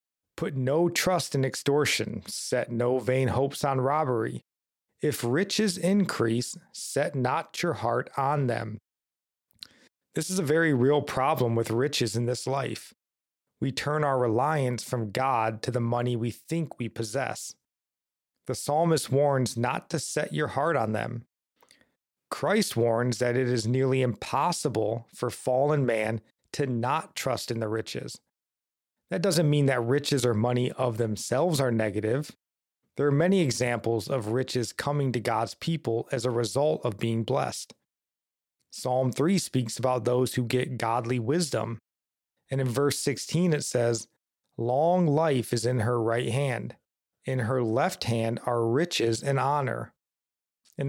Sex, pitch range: male, 115-145 Hz